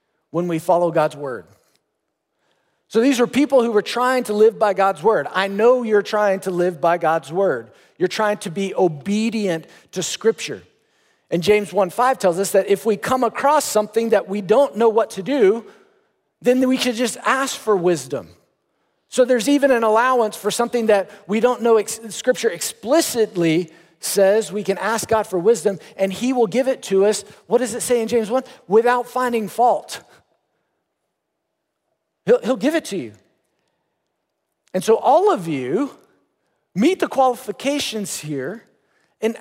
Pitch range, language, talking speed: 180-240 Hz, English, 170 wpm